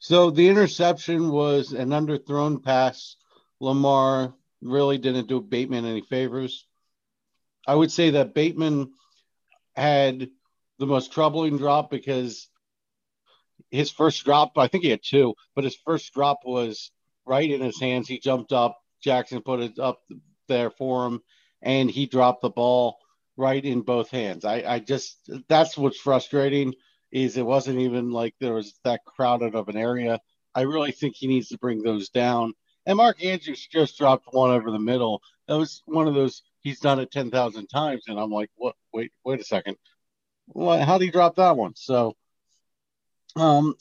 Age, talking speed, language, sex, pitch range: 50-69, 170 wpm, English, male, 125-145 Hz